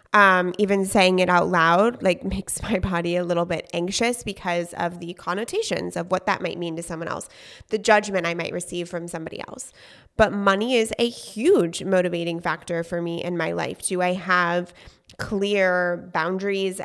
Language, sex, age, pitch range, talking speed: English, female, 20-39, 170-195 Hz, 180 wpm